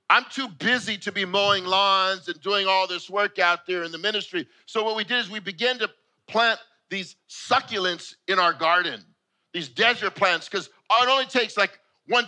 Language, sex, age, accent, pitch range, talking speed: English, male, 50-69, American, 185-245 Hz, 195 wpm